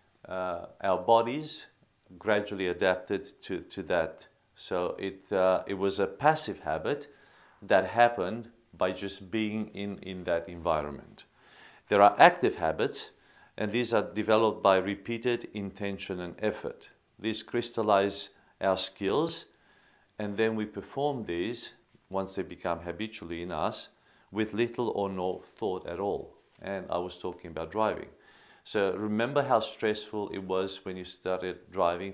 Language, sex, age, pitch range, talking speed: English, male, 40-59, 90-110 Hz, 140 wpm